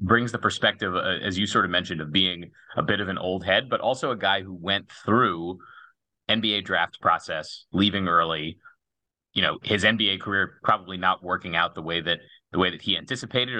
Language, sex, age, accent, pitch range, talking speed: English, male, 30-49, American, 90-105 Hz, 205 wpm